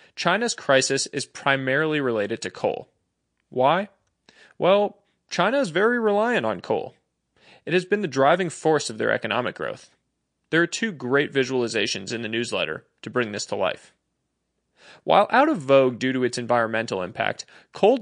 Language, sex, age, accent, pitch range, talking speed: English, male, 20-39, American, 130-175 Hz, 160 wpm